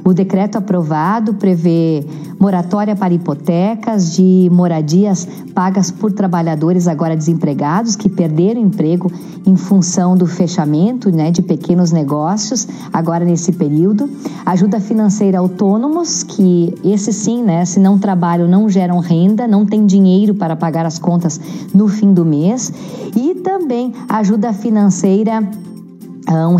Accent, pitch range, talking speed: Brazilian, 175-210 Hz, 130 wpm